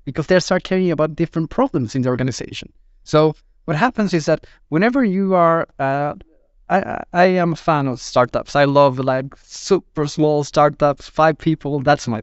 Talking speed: 175 wpm